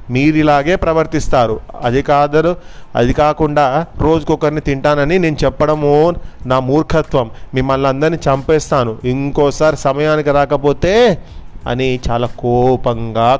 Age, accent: 30-49, native